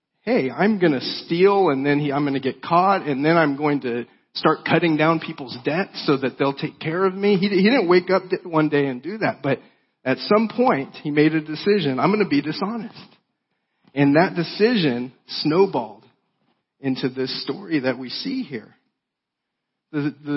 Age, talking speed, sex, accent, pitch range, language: 40-59, 190 wpm, male, American, 140-190 Hz, English